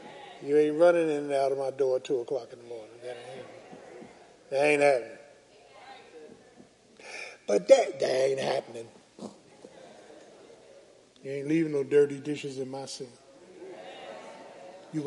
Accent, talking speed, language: American, 130 wpm, English